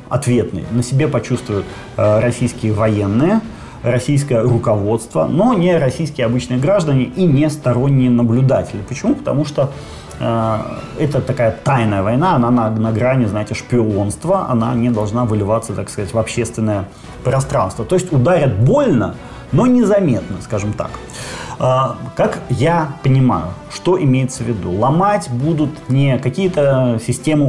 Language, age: Ukrainian, 30-49